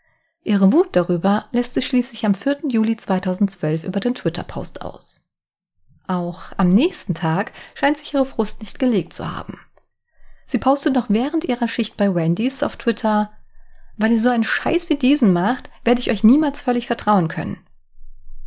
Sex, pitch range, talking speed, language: female, 180-240 Hz, 165 wpm, German